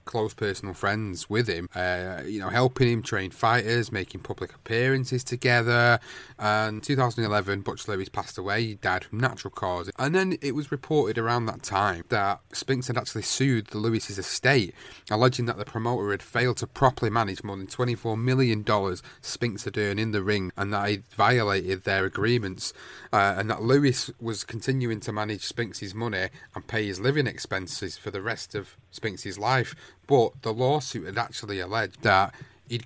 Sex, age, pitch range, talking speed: male, 30-49, 105-125 Hz, 180 wpm